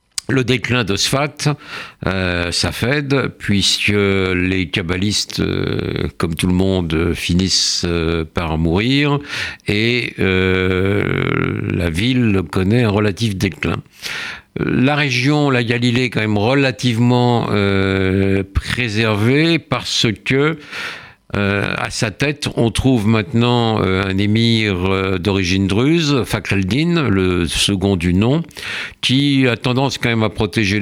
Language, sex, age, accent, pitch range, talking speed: French, male, 60-79, French, 95-125 Hz, 125 wpm